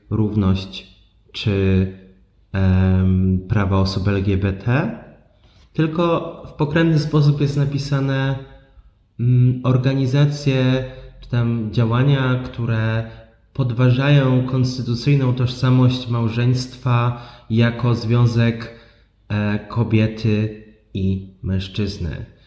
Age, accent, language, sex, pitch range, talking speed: 20-39, native, Polish, male, 100-125 Hz, 65 wpm